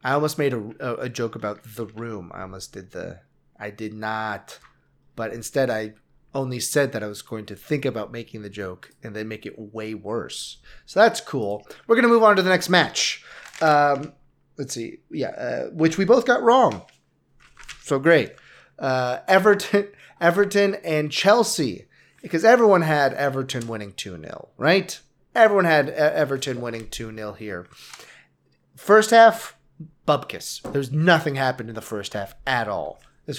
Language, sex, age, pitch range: English, male, 30-49, 120-165 Hz